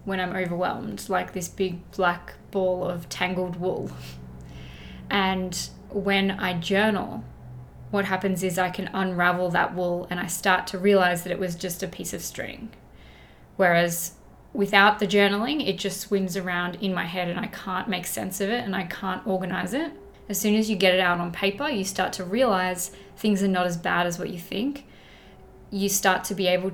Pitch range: 180-195 Hz